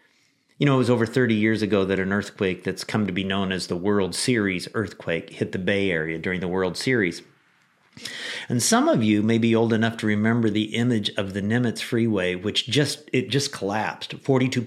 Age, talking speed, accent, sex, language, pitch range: 50-69, 210 wpm, American, male, English, 100-130 Hz